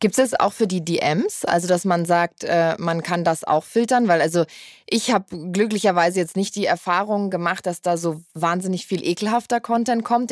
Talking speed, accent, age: 190 wpm, German, 20-39